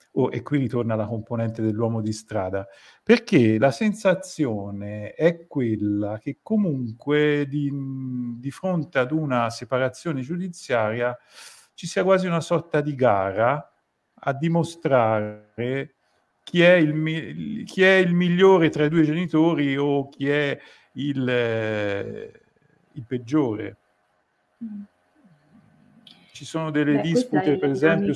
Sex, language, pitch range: male, Italian, 110-150 Hz